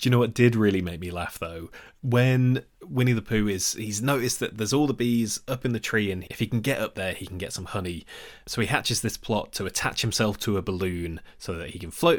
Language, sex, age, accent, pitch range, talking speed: English, male, 20-39, British, 100-125 Hz, 265 wpm